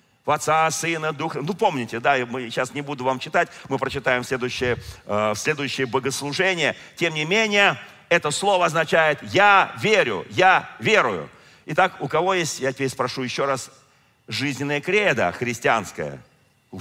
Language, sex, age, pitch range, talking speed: Russian, male, 50-69, 125-160 Hz, 150 wpm